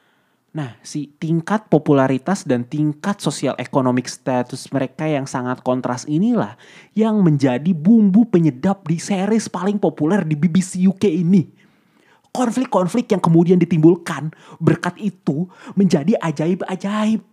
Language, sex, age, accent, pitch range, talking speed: Indonesian, male, 30-49, native, 125-185 Hz, 120 wpm